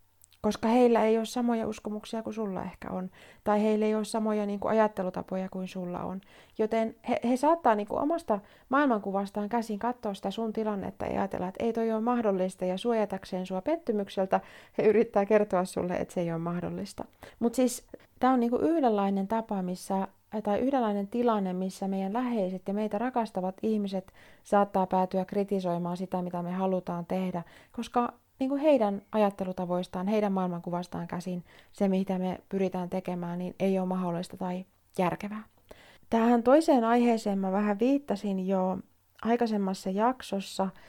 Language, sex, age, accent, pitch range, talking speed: Finnish, female, 30-49, native, 185-215 Hz, 150 wpm